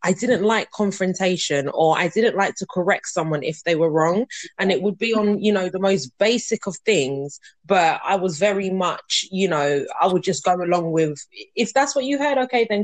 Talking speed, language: 220 wpm, English